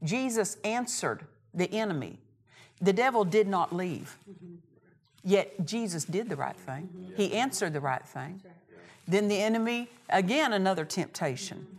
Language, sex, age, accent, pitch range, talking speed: English, female, 50-69, American, 165-220 Hz, 130 wpm